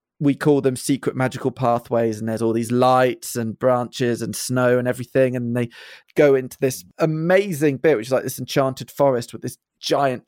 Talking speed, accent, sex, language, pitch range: 195 wpm, British, male, English, 120-140 Hz